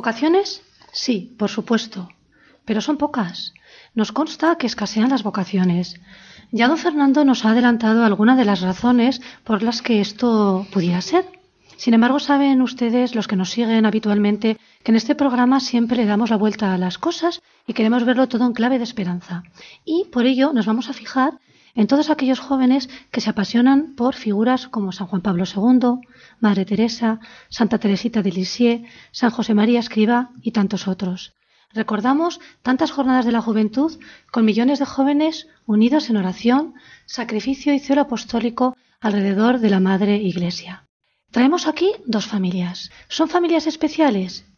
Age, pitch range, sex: 40-59, 210-270 Hz, female